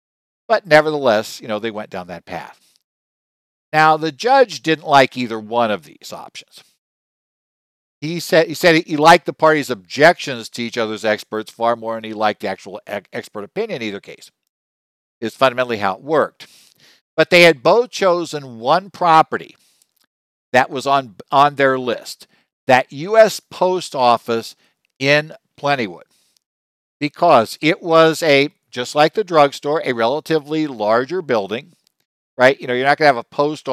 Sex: male